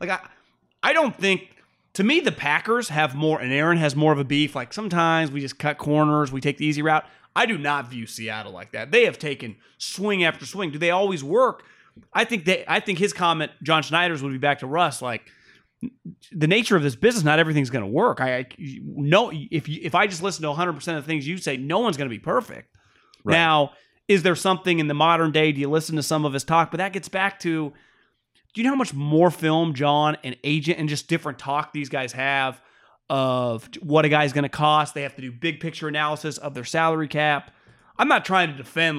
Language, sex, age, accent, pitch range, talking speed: English, male, 30-49, American, 145-190 Hz, 230 wpm